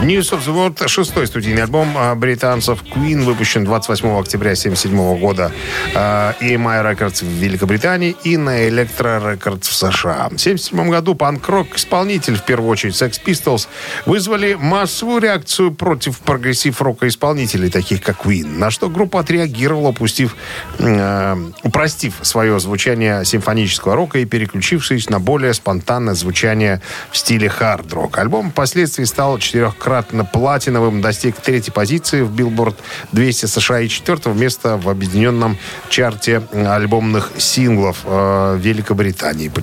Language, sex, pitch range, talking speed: Russian, male, 100-140 Hz, 130 wpm